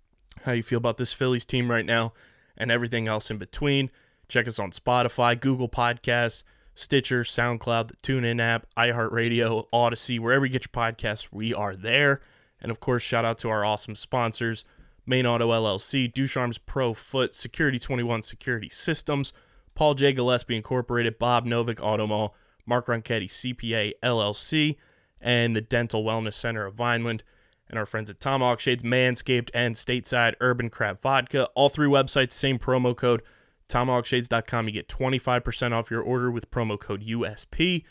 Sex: male